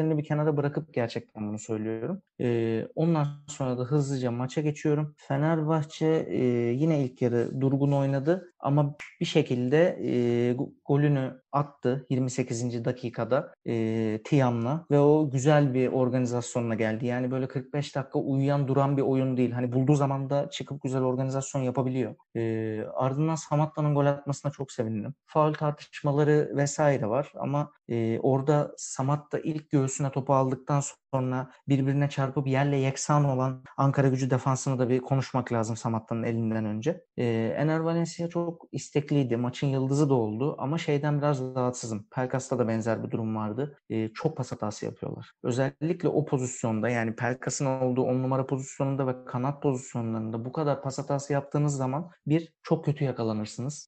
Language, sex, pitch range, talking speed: Turkish, male, 125-145 Hz, 145 wpm